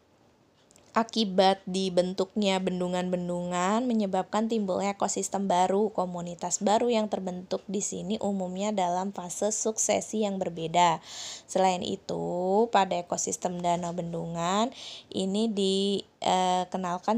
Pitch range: 180-205 Hz